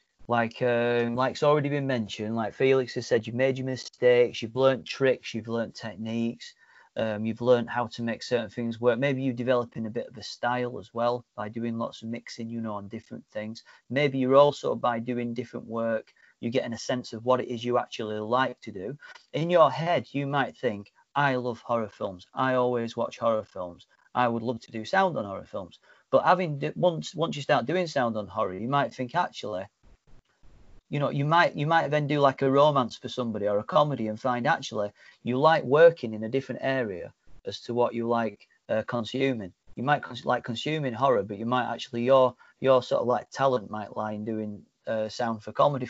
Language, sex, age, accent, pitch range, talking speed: English, male, 30-49, British, 115-135 Hz, 215 wpm